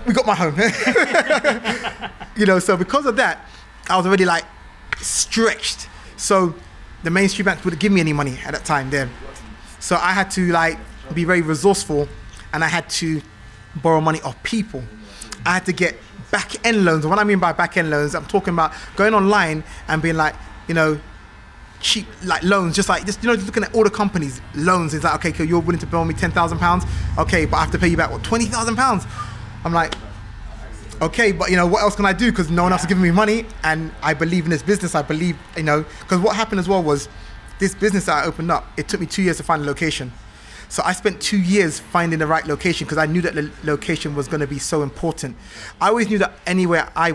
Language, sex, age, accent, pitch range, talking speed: English, male, 20-39, British, 150-195 Hz, 230 wpm